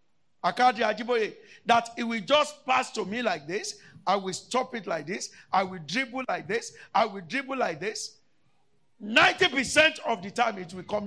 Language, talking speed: English, 175 wpm